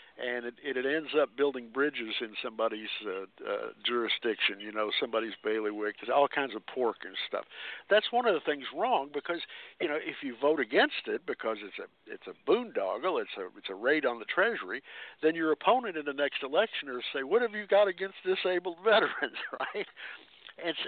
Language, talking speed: English, 200 wpm